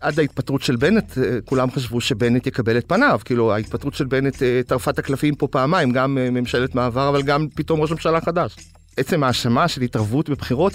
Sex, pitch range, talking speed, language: male, 125-175 Hz, 185 wpm, Hebrew